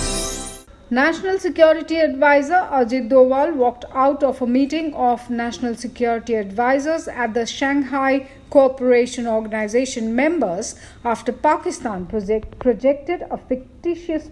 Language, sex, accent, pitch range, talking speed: English, female, Indian, 215-265 Hz, 105 wpm